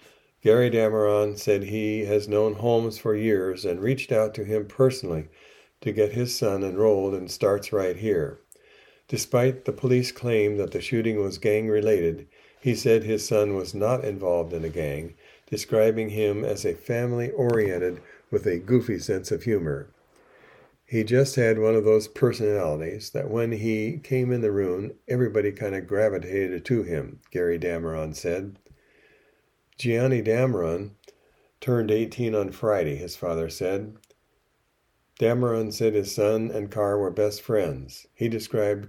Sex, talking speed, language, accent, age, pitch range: male, 150 wpm, English, American, 60-79, 105-120 Hz